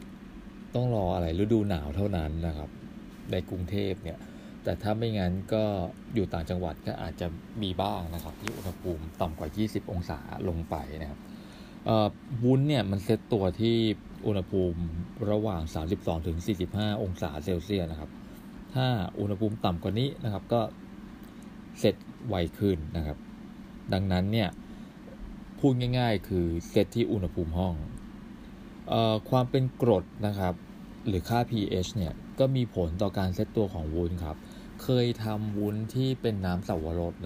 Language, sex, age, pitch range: Thai, male, 20-39, 90-110 Hz